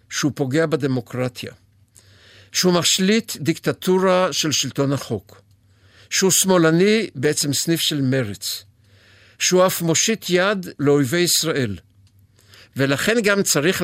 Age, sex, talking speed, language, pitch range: 60-79, male, 105 wpm, Hebrew, 105-160 Hz